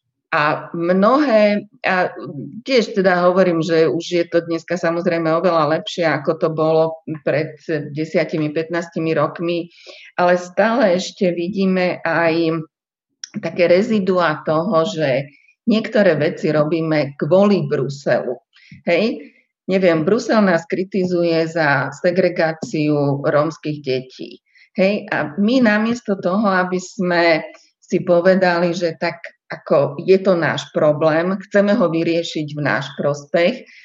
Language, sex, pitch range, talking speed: Slovak, female, 160-190 Hz, 115 wpm